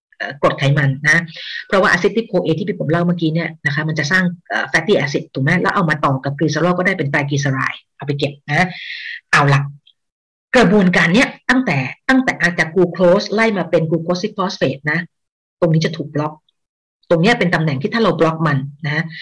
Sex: female